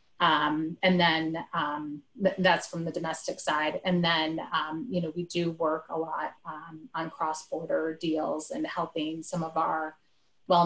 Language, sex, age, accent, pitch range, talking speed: English, female, 30-49, American, 160-180 Hz, 170 wpm